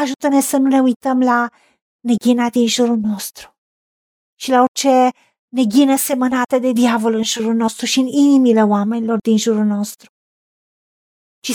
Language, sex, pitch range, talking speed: Romanian, female, 235-280 Hz, 145 wpm